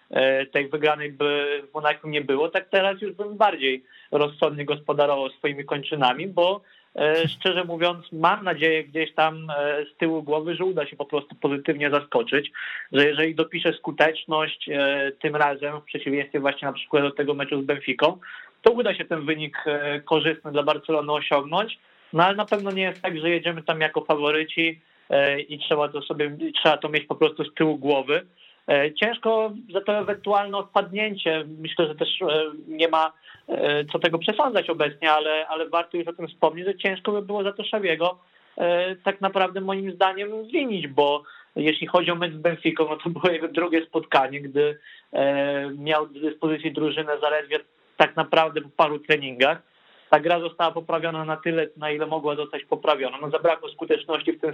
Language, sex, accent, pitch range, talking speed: Polish, male, native, 150-175 Hz, 170 wpm